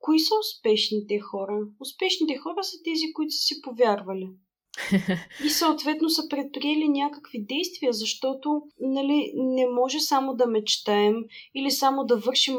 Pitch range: 220-295 Hz